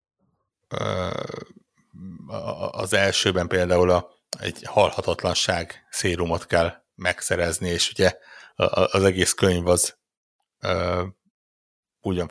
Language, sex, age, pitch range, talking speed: Hungarian, male, 60-79, 85-95 Hz, 75 wpm